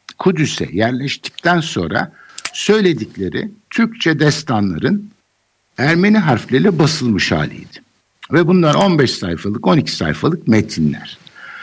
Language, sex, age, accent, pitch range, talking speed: Turkish, male, 60-79, native, 100-170 Hz, 90 wpm